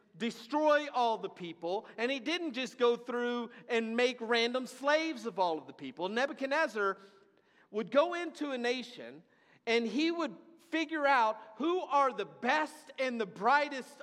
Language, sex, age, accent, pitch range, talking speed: English, male, 50-69, American, 205-285 Hz, 160 wpm